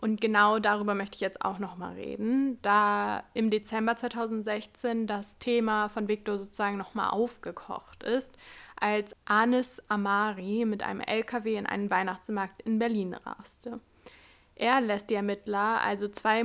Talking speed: 140 wpm